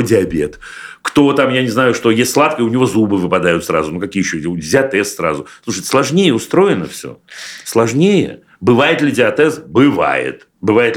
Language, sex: Russian, male